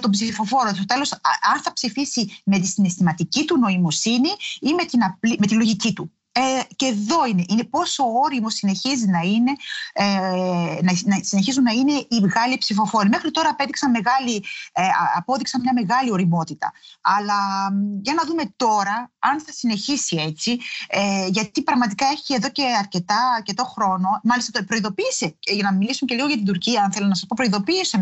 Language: Greek